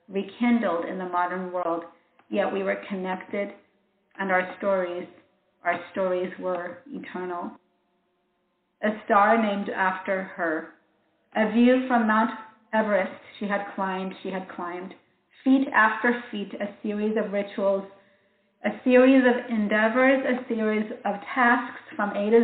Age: 40-59